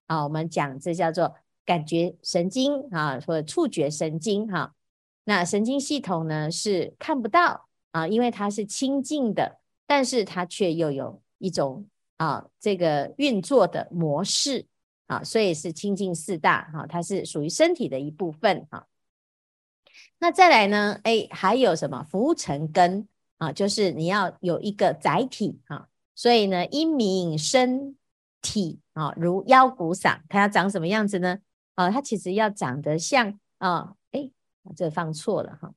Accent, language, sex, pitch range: American, Chinese, female, 165-235 Hz